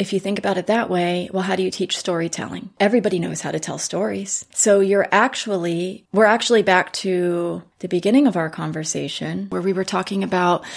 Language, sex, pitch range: Romanian, female, 180-220 Hz